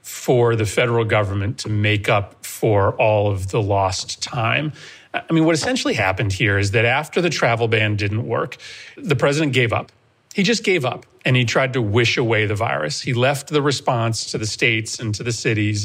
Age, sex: 40-59, male